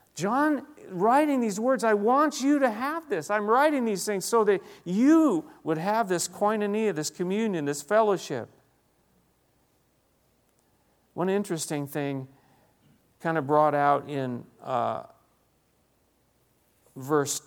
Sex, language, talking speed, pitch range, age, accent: male, English, 120 wpm, 175-225 Hz, 50-69, American